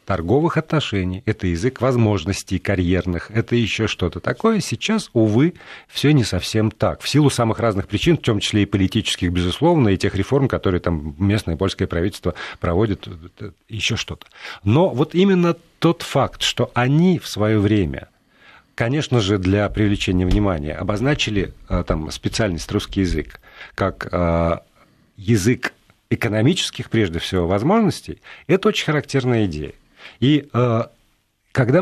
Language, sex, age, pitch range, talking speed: Russian, male, 50-69, 95-125 Hz, 135 wpm